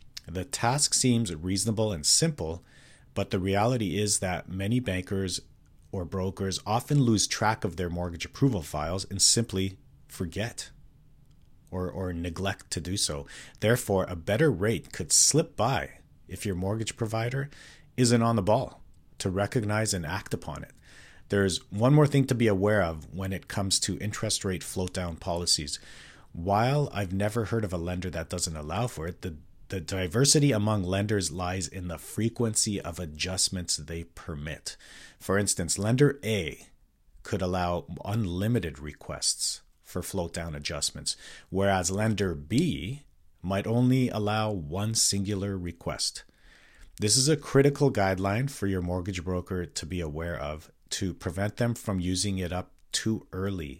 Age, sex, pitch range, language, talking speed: 40-59, male, 90-110 Hz, English, 155 wpm